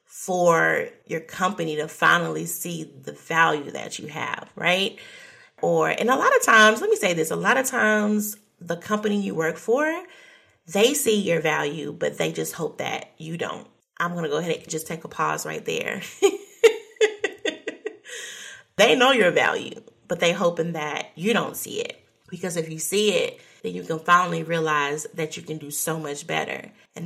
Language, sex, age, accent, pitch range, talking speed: English, female, 30-49, American, 160-245 Hz, 185 wpm